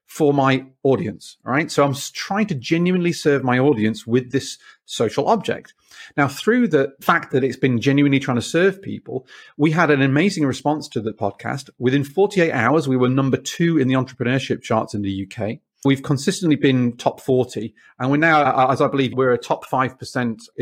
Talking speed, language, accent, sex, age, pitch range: 190 wpm, English, British, male, 30-49, 120-150 Hz